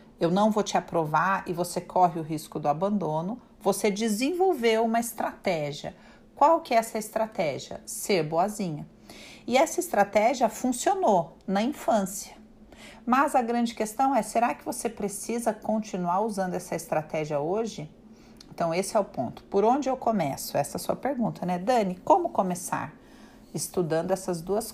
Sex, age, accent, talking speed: female, 40-59, Brazilian, 155 wpm